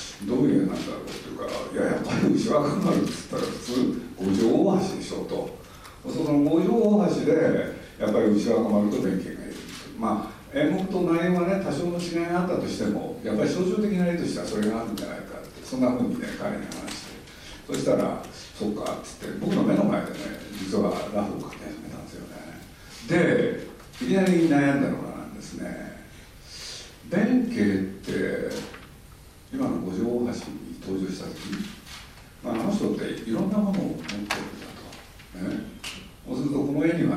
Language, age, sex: Japanese, 60-79, male